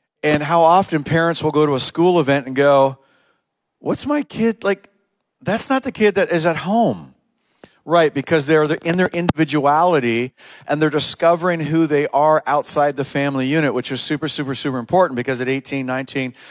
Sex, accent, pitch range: male, American, 125-155 Hz